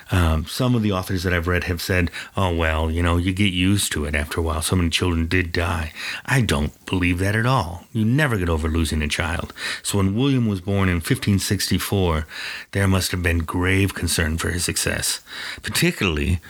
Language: English